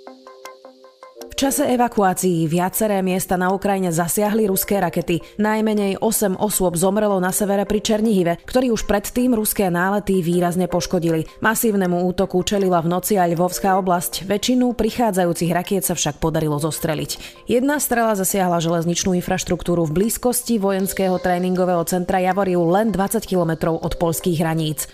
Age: 30-49